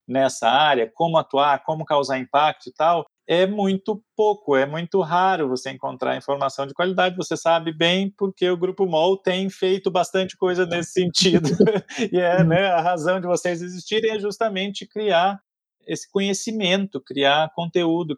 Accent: Brazilian